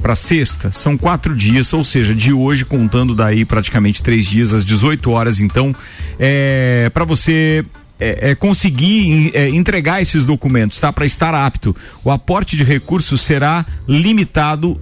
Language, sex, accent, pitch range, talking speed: Portuguese, male, Brazilian, 120-170 Hz, 155 wpm